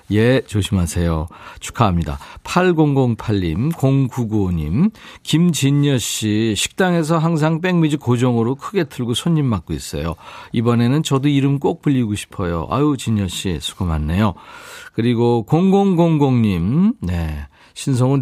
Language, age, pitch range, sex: Korean, 40-59, 105-155 Hz, male